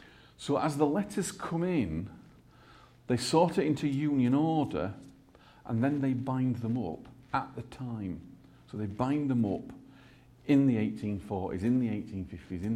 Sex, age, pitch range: male, 50-69, 105-135 Hz